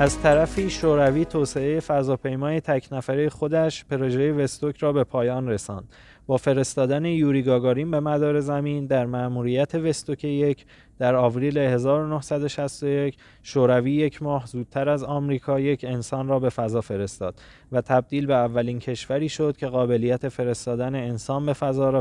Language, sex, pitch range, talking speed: Persian, male, 125-150 Hz, 140 wpm